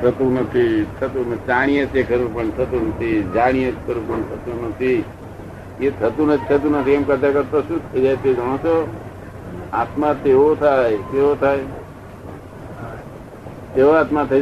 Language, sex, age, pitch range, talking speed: Gujarati, male, 60-79, 115-150 Hz, 140 wpm